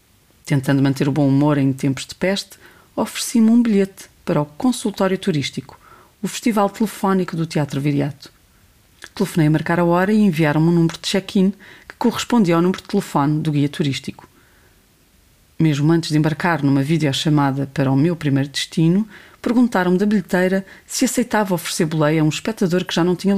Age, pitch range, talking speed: 30-49, 145-190 Hz, 170 wpm